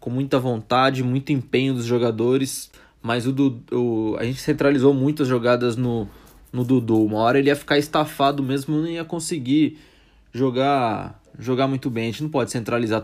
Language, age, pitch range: English, 20-39, 110-135 Hz